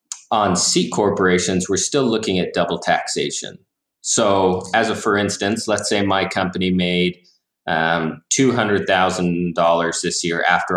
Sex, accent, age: male, American, 30-49